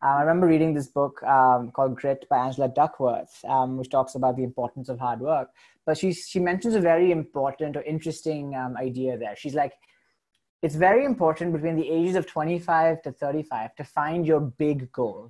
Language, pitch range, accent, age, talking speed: English, 135-175 Hz, Indian, 20-39, 195 wpm